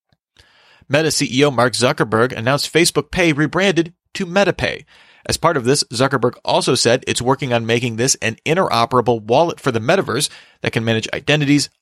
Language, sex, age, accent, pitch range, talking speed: English, male, 40-59, American, 120-155 Hz, 160 wpm